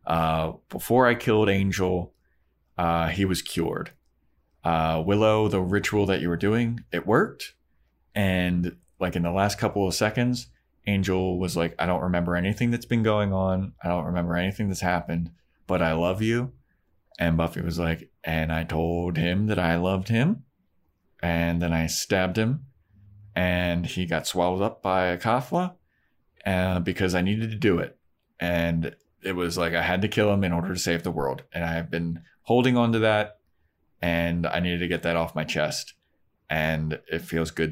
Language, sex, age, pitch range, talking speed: English, male, 20-39, 85-95 Hz, 185 wpm